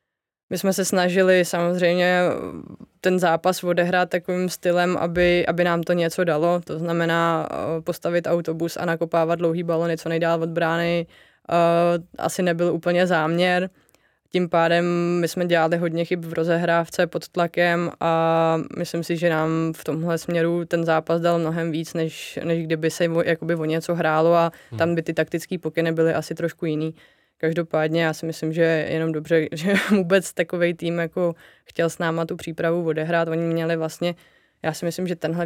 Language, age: Czech, 20-39